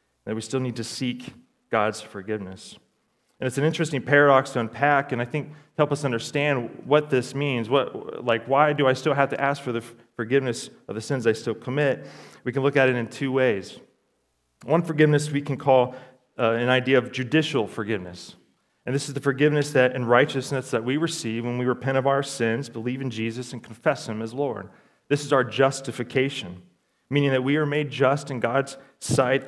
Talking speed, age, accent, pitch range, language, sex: 200 wpm, 30-49, American, 115-140 Hz, English, male